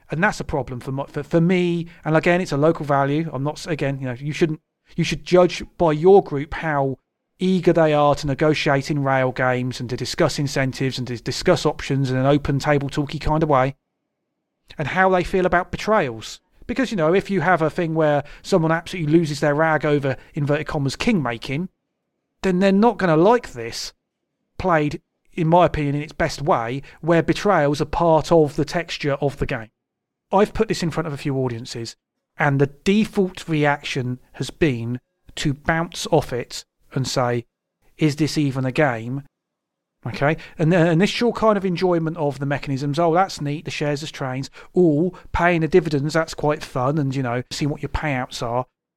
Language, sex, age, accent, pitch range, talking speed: English, male, 30-49, British, 140-175 Hz, 195 wpm